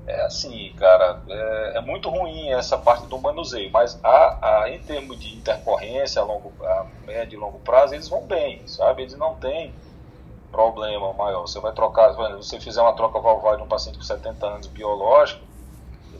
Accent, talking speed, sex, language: Brazilian, 180 wpm, male, Portuguese